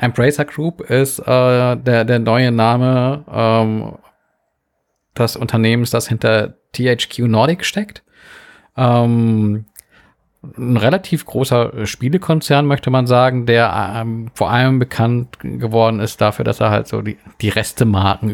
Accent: German